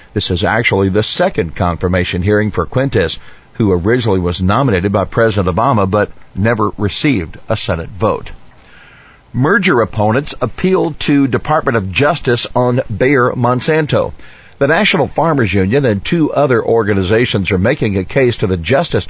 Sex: male